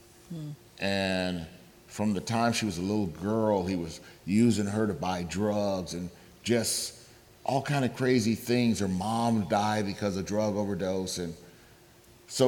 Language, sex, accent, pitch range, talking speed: English, male, American, 95-120 Hz, 155 wpm